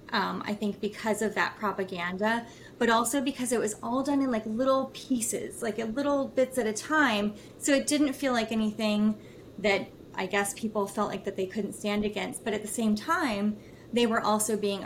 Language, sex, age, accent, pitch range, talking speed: English, female, 20-39, American, 190-225 Hz, 205 wpm